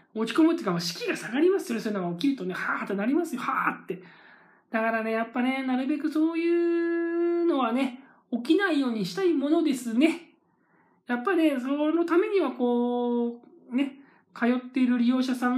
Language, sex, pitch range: Japanese, male, 180-255 Hz